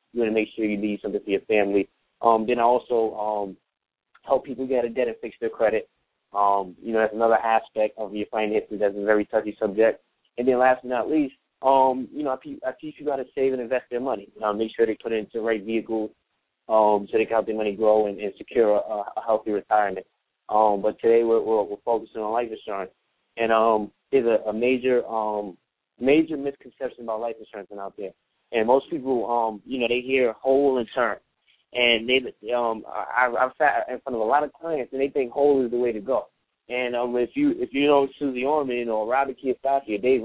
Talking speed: 230 wpm